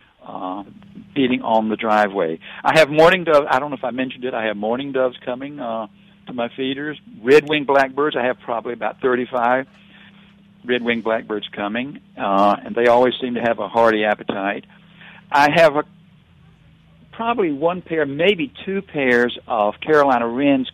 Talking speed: 160 wpm